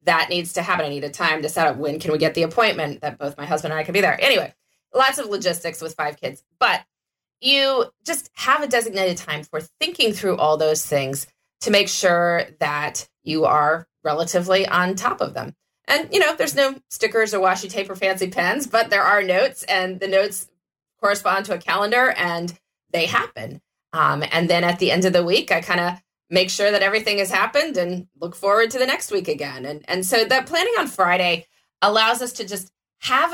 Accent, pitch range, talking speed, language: American, 155-220 Hz, 220 wpm, English